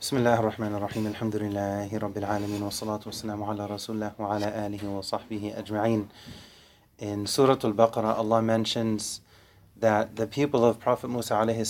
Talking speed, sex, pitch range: 60 wpm, male, 110-140 Hz